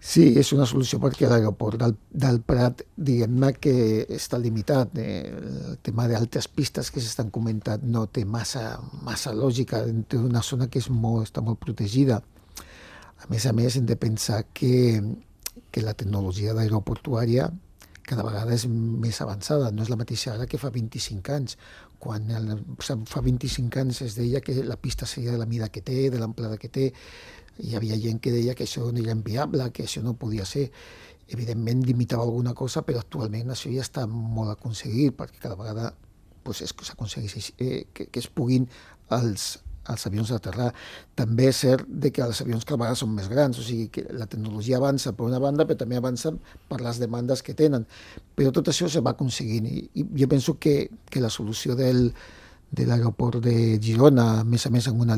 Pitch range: 110-130 Hz